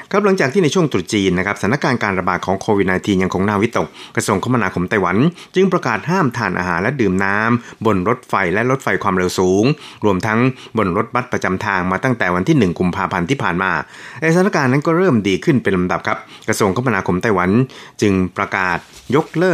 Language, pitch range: Thai, 95-120 Hz